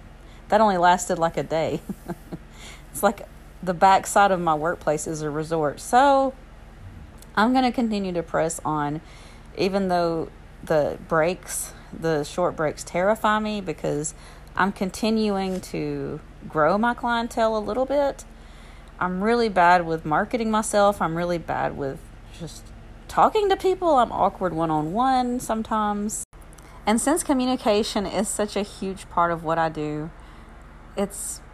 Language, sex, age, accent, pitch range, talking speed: English, female, 40-59, American, 155-210 Hz, 140 wpm